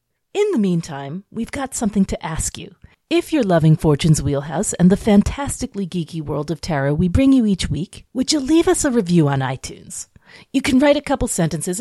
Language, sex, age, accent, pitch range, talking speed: English, female, 40-59, American, 160-250 Hz, 205 wpm